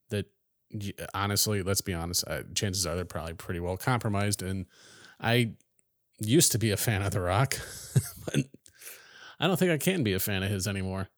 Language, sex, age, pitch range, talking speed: English, male, 30-49, 95-115 Hz, 175 wpm